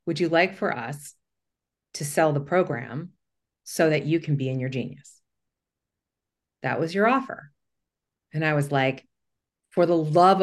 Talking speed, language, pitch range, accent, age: 160 wpm, English, 140-175 Hz, American, 40-59